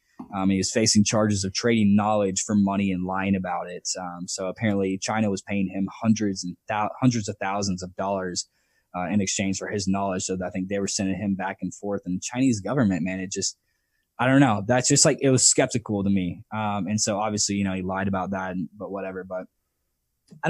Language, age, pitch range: English, 10-29, 95-120 Hz